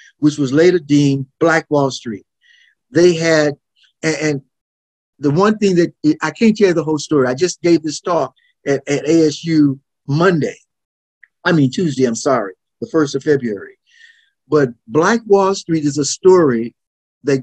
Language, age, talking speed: English, 50-69, 170 wpm